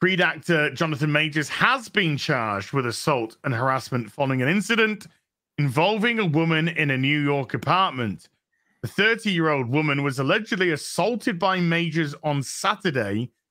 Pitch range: 135-175 Hz